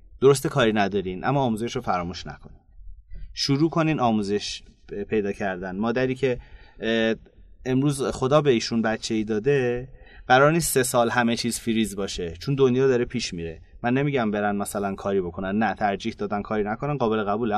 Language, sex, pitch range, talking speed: Persian, male, 110-145 Hz, 160 wpm